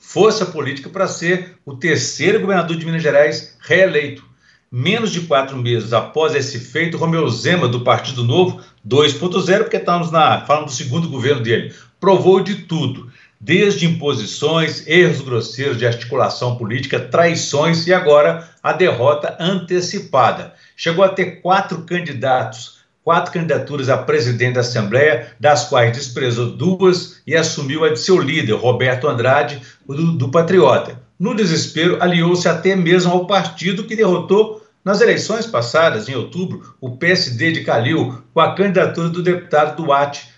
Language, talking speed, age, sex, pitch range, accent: Portuguese, 145 wpm, 60-79, male, 135-180 Hz, Brazilian